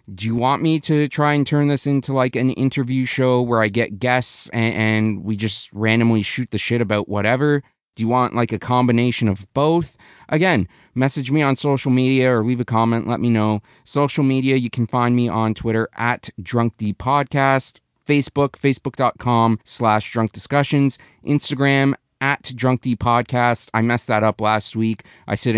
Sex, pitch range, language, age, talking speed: male, 110-140 Hz, English, 30-49, 185 wpm